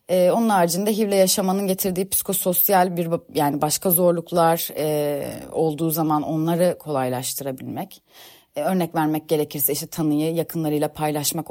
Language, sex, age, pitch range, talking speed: Turkish, female, 30-49, 150-215 Hz, 110 wpm